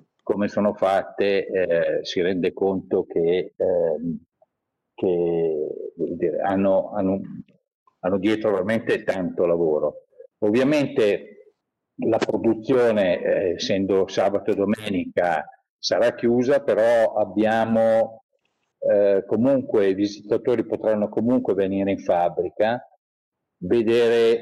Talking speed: 85 wpm